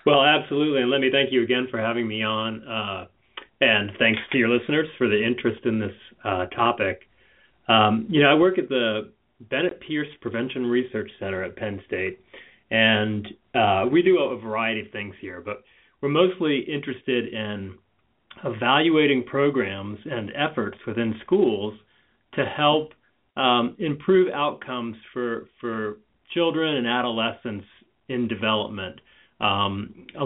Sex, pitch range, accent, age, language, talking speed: male, 110-135 Hz, American, 30-49, English, 145 wpm